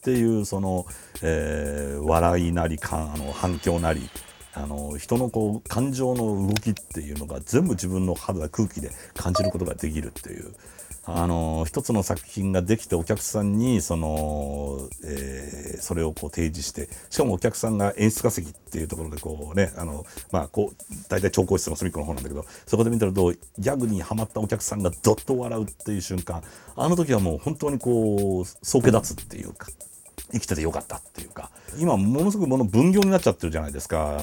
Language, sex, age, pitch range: Japanese, male, 60-79, 80-115 Hz